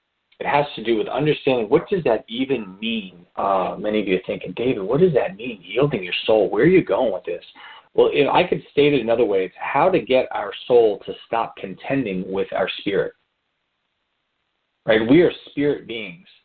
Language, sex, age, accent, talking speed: English, male, 40-59, American, 210 wpm